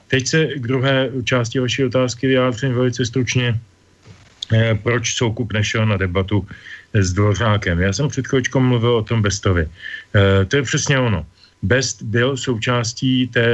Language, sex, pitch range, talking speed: Slovak, male, 100-120 Hz, 140 wpm